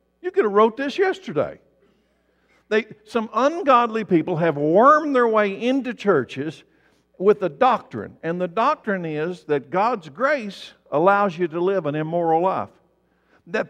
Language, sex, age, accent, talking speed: English, male, 60-79, American, 145 wpm